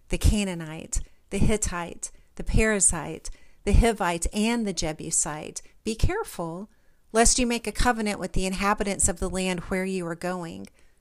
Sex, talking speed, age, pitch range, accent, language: female, 155 wpm, 40-59, 170-215 Hz, American, English